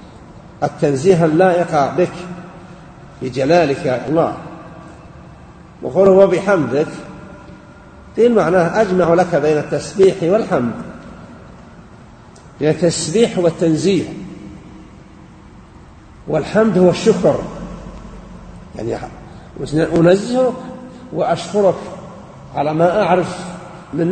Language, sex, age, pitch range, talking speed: English, male, 50-69, 140-190 Hz, 65 wpm